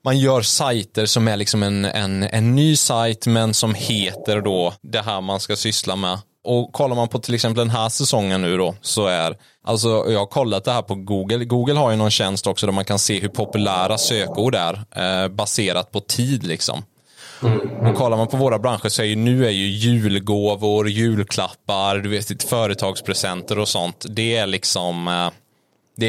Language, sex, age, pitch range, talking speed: English, male, 20-39, 95-120 Hz, 180 wpm